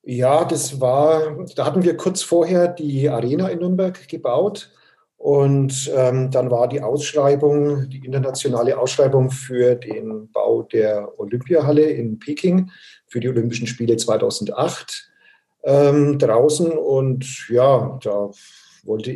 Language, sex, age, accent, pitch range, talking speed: German, male, 50-69, German, 120-155 Hz, 125 wpm